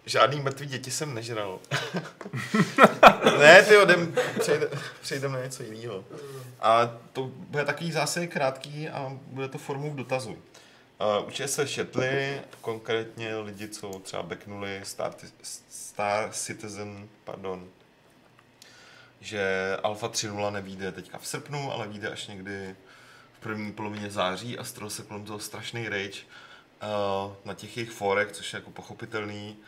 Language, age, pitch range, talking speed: Czech, 30-49, 105-130 Hz, 140 wpm